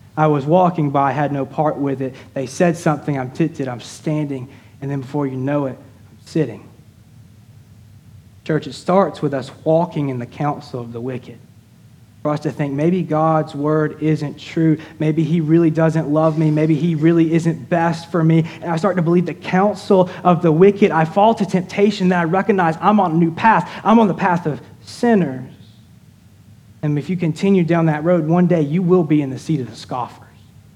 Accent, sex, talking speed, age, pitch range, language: American, male, 205 wpm, 30-49, 135-175 Hz, English